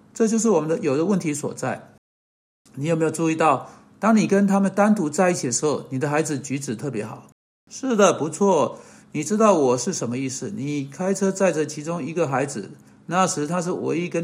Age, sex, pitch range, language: 60-79, male, 145-200 Hz, Chinese